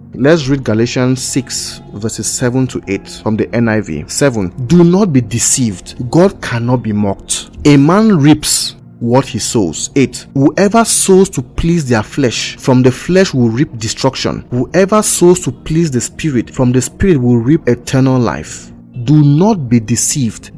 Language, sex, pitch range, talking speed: English, male, 115-145 Hz, 165 wpm